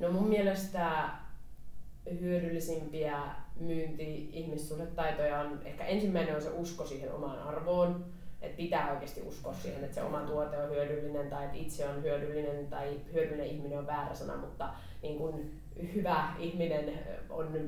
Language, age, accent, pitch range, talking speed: Finnish, 20-39, native, 150-175 Hz, 145 wpm